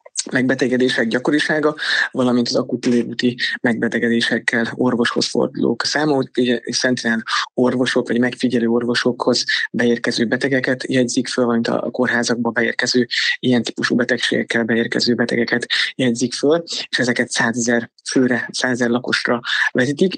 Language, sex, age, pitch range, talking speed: Hungarian, male, 20-39, 115-130 Hz, 110 wpm